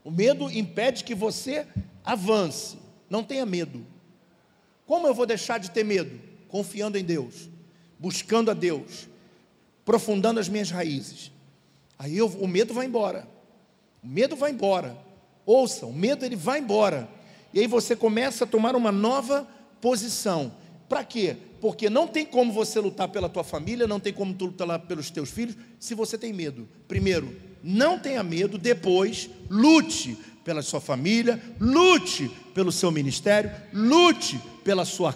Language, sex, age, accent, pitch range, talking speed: Portuguese, male, 50-69, Brazilian, 175-230 Hz, 150 wpm